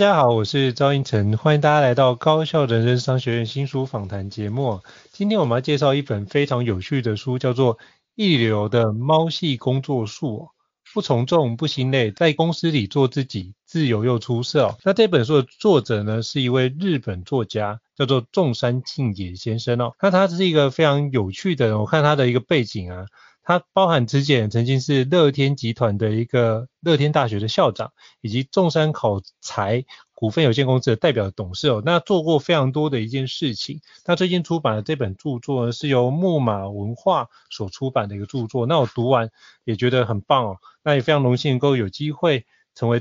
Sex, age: male, 30-49